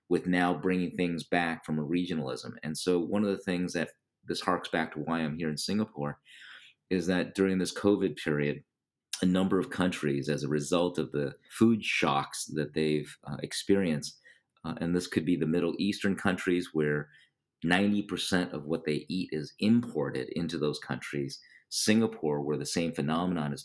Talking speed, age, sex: 180 wpm, 40-59, male